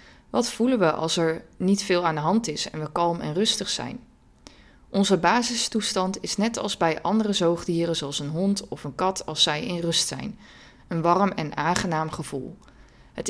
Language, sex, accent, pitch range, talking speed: Dutch, female, Dutch, 155-195 Hz, 190 wpm